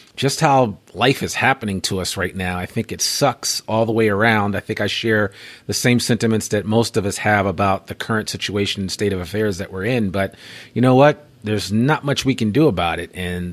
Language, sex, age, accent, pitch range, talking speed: English, male, 30-49, American, 90-110 Hz, 235 wpm